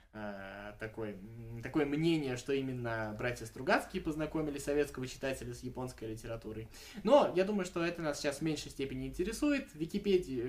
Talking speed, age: 150 wpm, 20-39